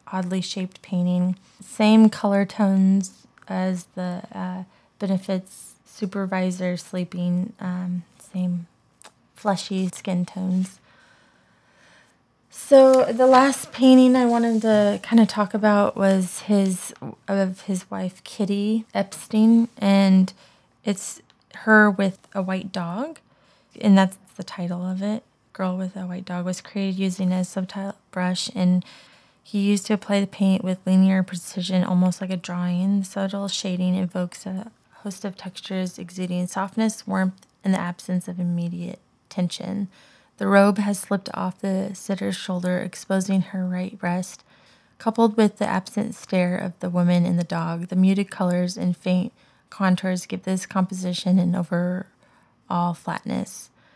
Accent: American